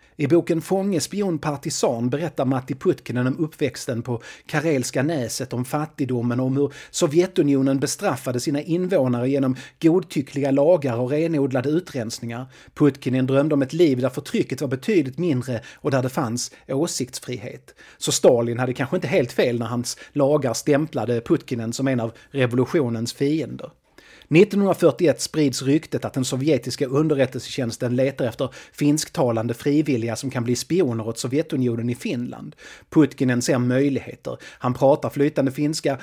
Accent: native